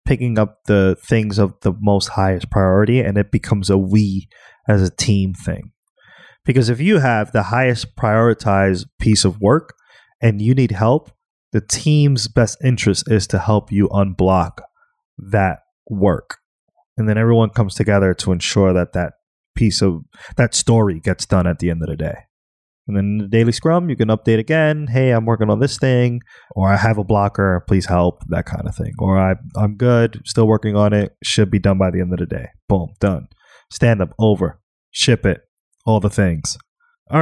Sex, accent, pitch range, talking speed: male, American, 100-125 Hz, 190 wpm